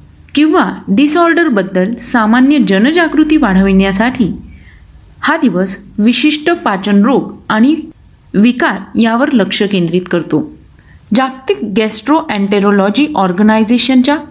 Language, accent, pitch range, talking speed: Marathi, native, 205-285 Hz, 85 wpm